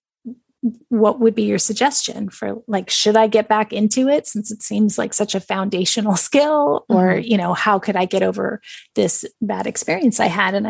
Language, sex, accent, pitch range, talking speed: English, female, American, 210-250 Hz, 195 wpm